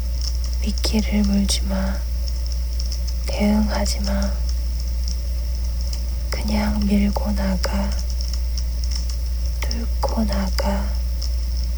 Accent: native